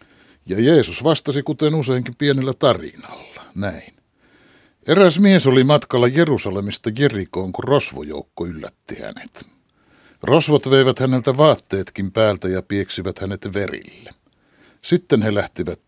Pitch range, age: 100-135 Hz, 60-79